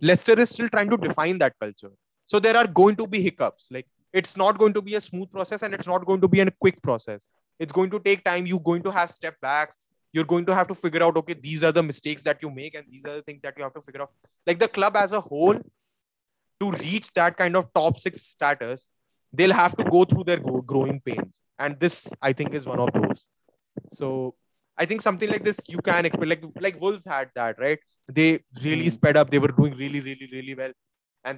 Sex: male